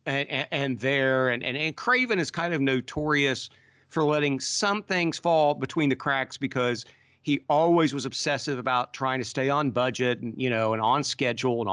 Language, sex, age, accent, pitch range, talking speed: English, male, 50-69, American, 125-170 Hz, 190 wpm